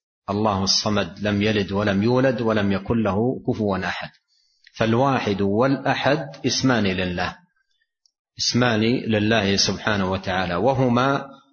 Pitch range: 105-145 Hz